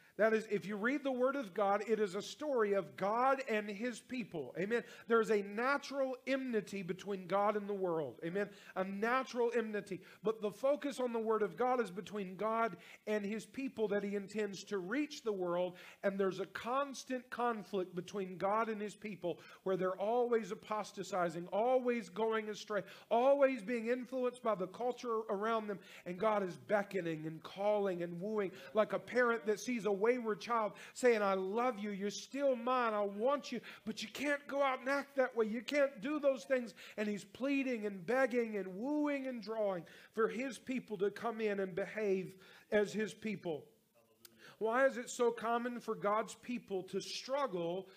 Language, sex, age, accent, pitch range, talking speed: English, male, 40-59, American, 195-245 Hz, 185 wpm